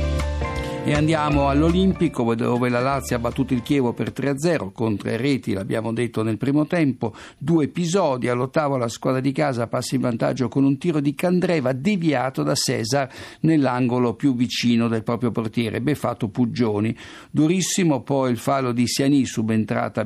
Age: 50-69